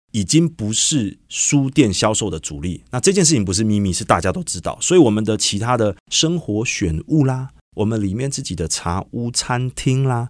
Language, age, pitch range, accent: Chinese, 30-49, 95-145 Hz, native